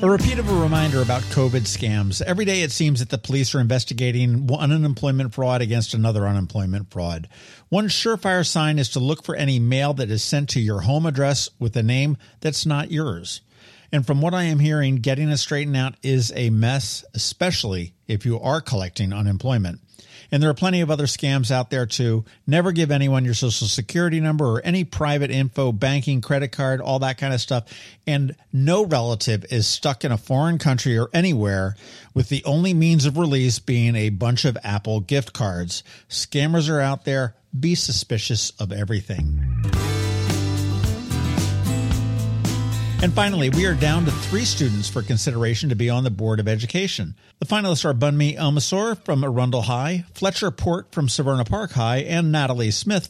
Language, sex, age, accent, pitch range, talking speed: English, male, 50-69, American, 115-150 Hz, 180 wpm